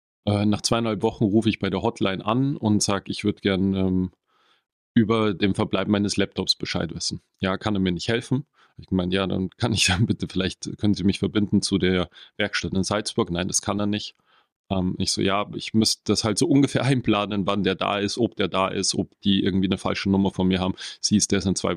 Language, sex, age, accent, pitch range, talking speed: German, male, 30-49, German, 95-110 Hz, 230 wpm